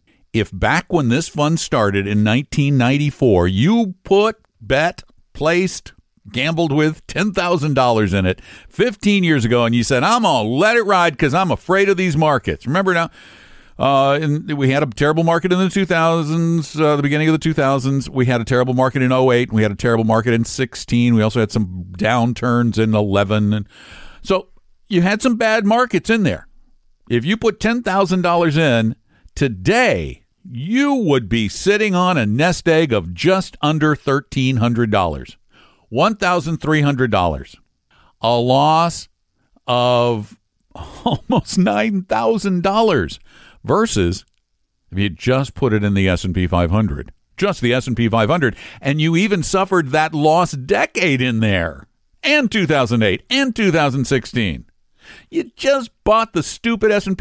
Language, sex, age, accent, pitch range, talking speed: English, male, 60-79, American, 115-185 Hz, 145 wpm